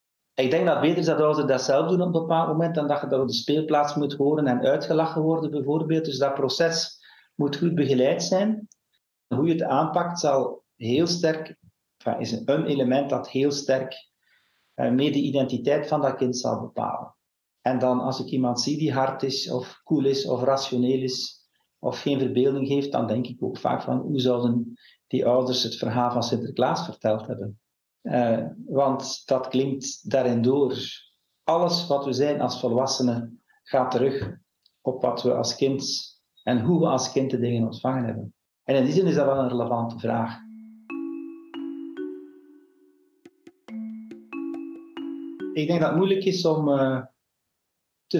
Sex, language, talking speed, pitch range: male, Dutch, 170 wpm, 130-160 Hz